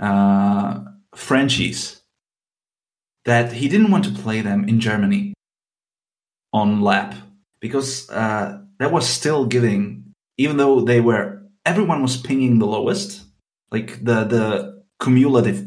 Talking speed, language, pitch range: 125 wpm, English, 100-130 Hz